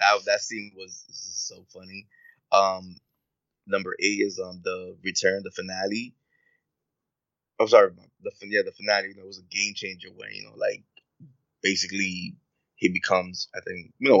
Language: English